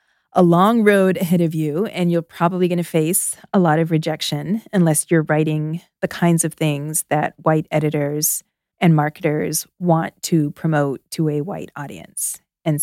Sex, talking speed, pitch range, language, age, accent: female, 170 wpm, 155-185 Hz, English, 30-49, American